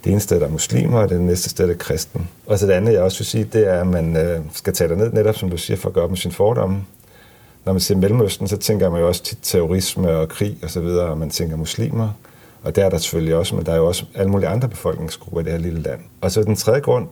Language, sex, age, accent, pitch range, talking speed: Danish, male, 40-59, native, 85-105 Hz, 290 wpm